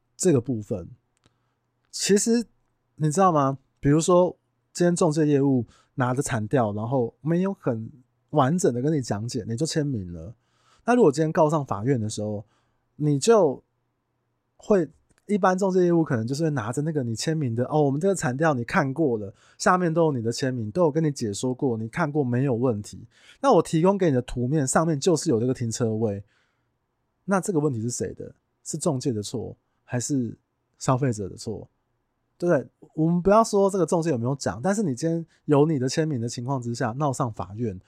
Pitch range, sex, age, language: 120-160 Hz, male, 20-39, Chinese